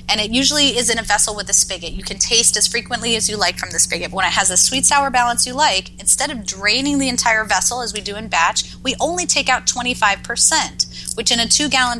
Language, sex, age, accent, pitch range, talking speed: English, female, 30-49, American, 185-245 Hz, 250 wpm